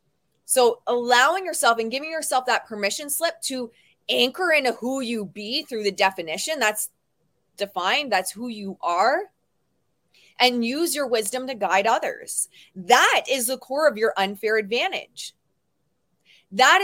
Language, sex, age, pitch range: English, female, 20-39, 200-265 Hz